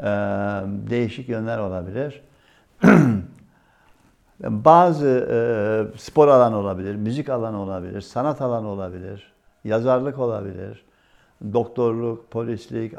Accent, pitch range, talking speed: native, 105-140 Hz, 85 wpm